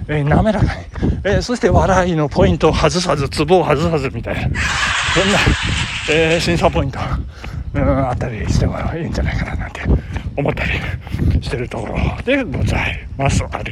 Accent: native